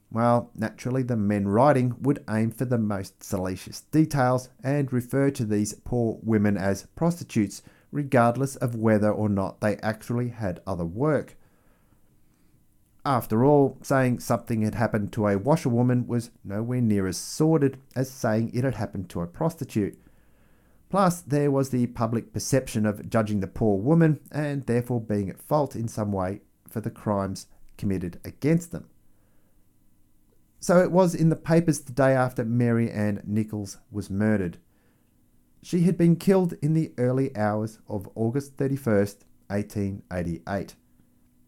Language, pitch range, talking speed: English, 105-135 Hz, 150 wpm